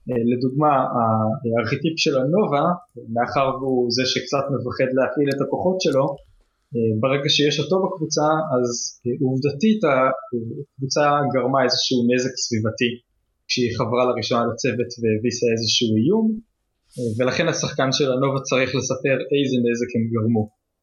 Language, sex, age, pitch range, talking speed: Hebrew, male, 20-39, 120-150 Hz, 120 wpm